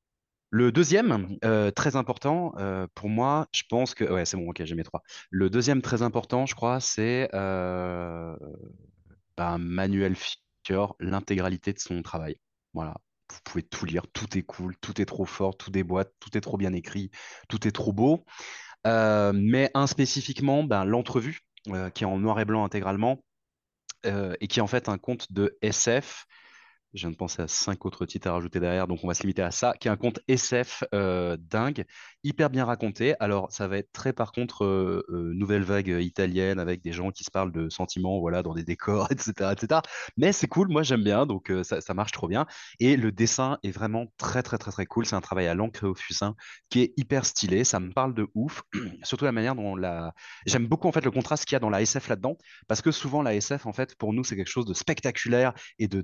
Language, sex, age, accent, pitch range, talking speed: French, male, 20-39, French, 95-125 Hz, 220 wpm